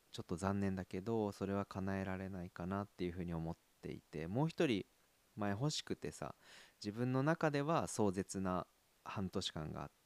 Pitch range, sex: 90-125 Hz, male